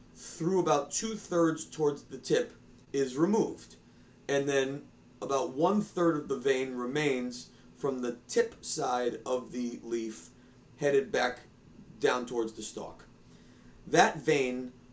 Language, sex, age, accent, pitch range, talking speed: English, male, 30-49, American, 125-155 Hz, 125 wpm